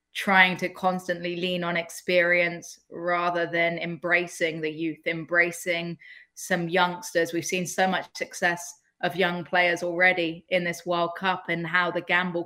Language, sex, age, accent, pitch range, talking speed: English, female, 20-39, British, 175-190 Hz, 150 wpm